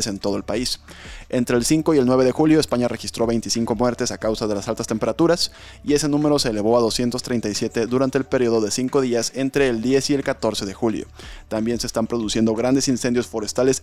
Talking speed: 215 wpm